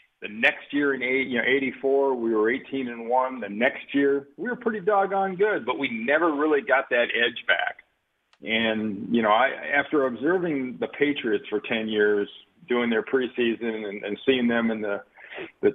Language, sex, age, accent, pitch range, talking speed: English, male, 50-69, American, 115-155 Hz, 195 wpm